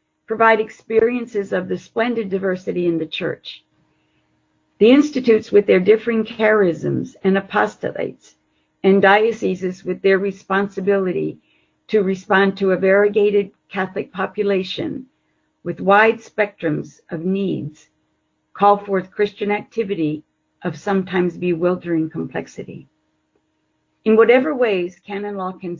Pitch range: 170-210 Hz